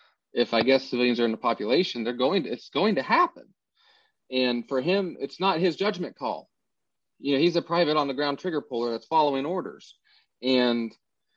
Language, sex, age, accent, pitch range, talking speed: English, male, 30-49, American, 125-155 Hz, 195 wpm